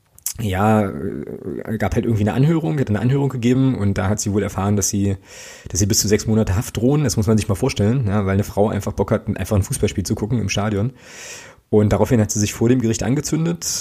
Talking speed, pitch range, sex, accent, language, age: 240 wpm, 100-115 Hz, male, German, German, 20-39